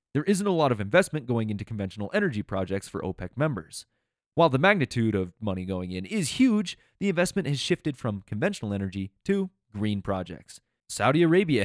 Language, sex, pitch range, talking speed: English, male, 100-155 Hz, 180 wpm